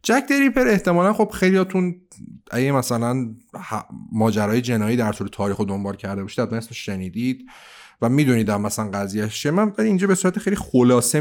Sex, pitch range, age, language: male, 105-170 Hz, 30-49, Persian